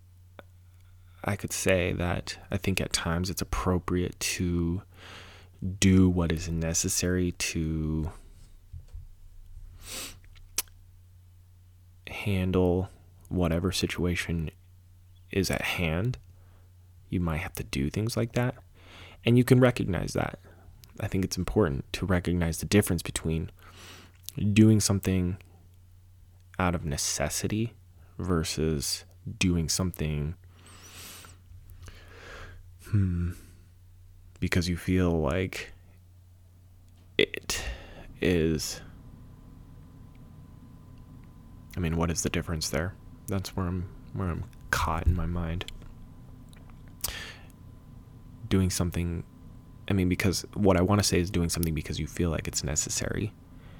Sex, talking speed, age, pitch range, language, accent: male, 105 wpm, 20-39, 85-95 Hz, English, American